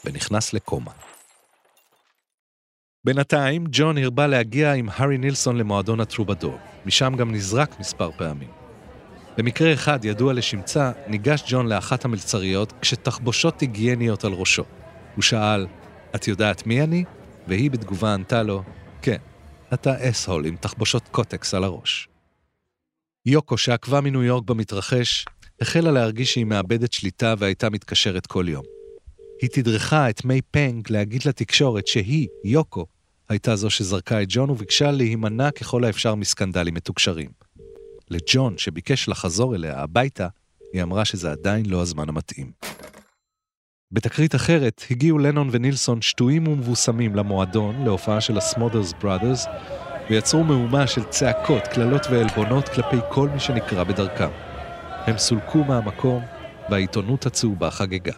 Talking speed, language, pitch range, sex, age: 125 wpm, Hebrew, 100-135 Hz, male, 40-59